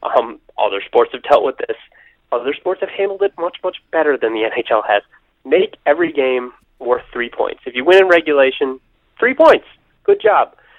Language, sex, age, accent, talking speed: English, male, 30-49, American, 190 wpm